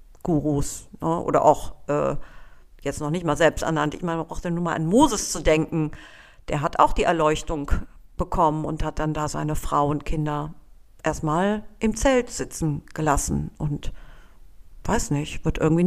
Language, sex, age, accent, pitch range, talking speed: German, female, 50-69, German, 155-235 Hz, 165 wpm